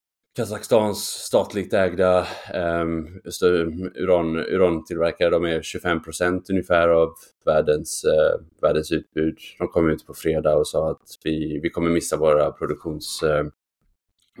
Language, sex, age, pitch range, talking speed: Swedish, male, 20-39, 80-85 Hz, 125 wpm